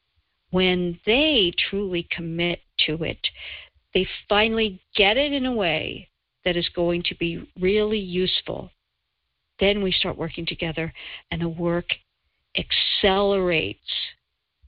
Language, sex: English, female